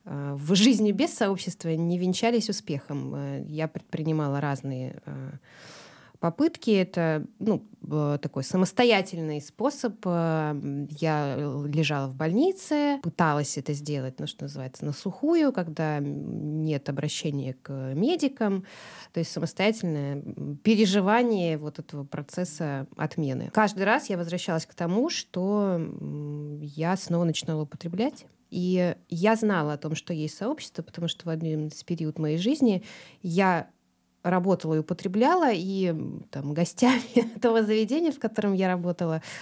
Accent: native